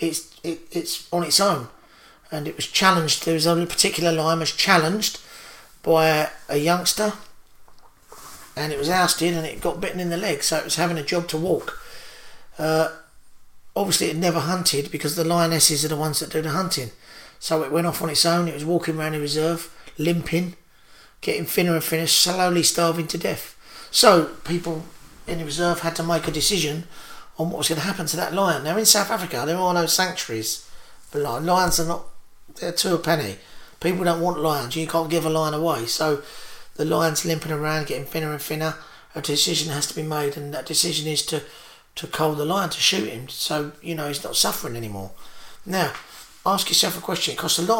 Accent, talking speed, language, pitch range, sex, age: British, 210 wpm, English, 155-170 Hz, male, 40-59